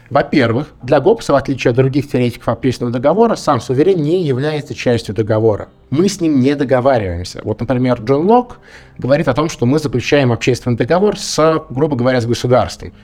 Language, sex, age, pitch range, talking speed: Russian, male, 20-39, 120-145 Hz, 175 wpm